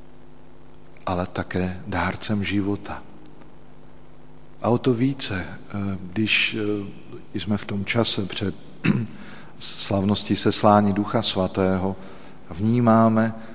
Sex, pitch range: male, 90-110 Hz